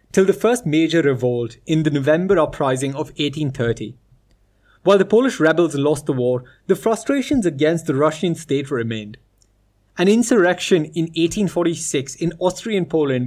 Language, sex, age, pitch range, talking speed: English, male, 20-39, 130-180 Hz, 145 wpm